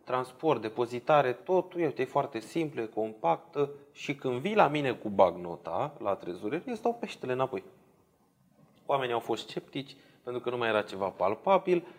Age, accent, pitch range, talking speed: 20-39, native, 110-160 Hz, 160 wpm